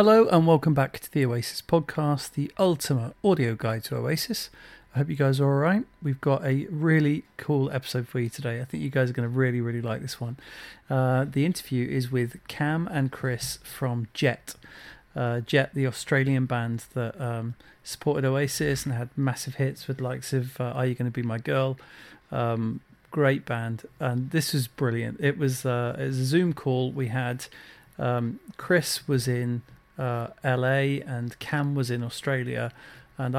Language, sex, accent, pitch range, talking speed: English, male, British, 125-145 Hz, 185 wpm